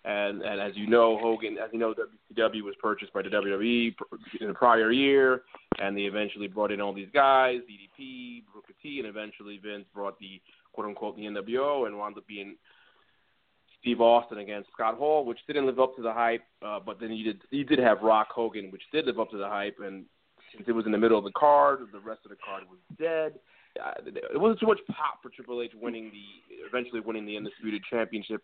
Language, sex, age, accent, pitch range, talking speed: English, male, 20-39, American, 105-125 Hz, 220 wpm